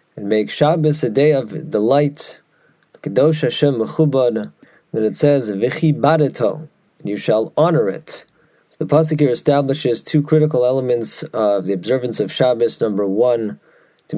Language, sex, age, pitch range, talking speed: English, male, 30-49, 120-155 Hz, 145 wpm